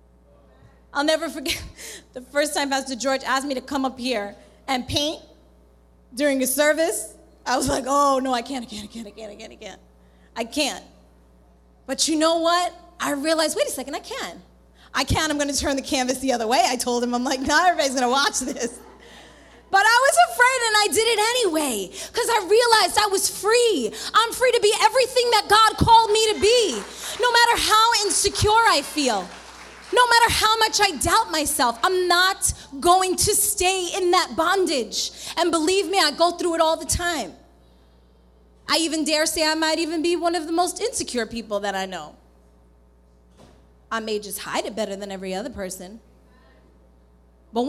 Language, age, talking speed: English, 20-39, 195 wpm